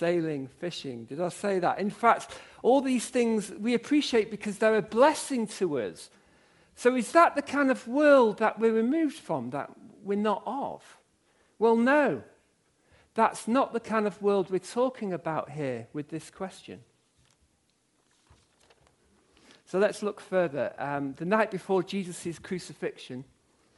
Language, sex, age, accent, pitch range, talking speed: English, male, 50-69, British, 175-250 Hz, 150 wpm